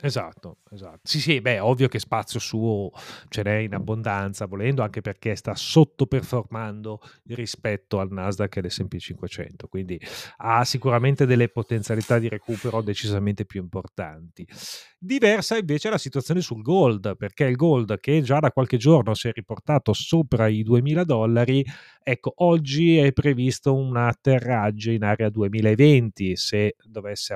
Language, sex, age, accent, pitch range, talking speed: Italian, male, 30-49, native, 105-130 Hz, 145 wpm